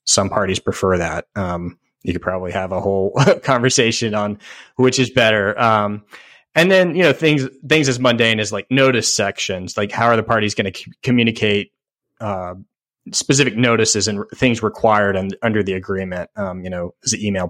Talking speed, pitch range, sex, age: 190 wpm, 95-120 Hz, male, 30-49